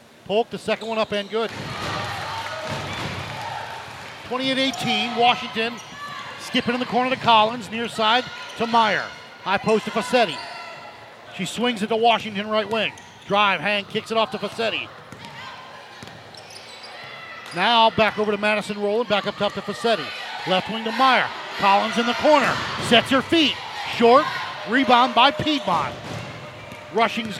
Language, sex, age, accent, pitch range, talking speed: English, male, 40-59, American, 200-240 Hz, 140 wpm